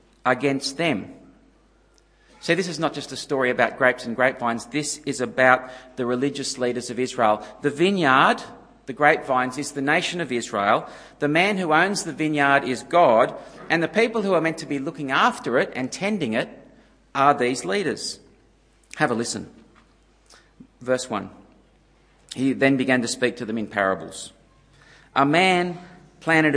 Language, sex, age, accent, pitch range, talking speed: English, male, 50-69, Australian, 125-160 Hz, 165 wpm